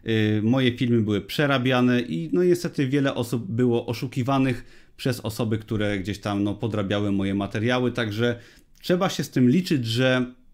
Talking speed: 150 wpm